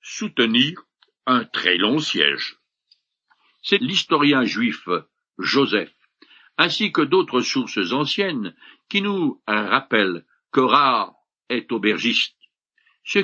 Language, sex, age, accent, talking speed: French, male, 60-79, French, 100 wpm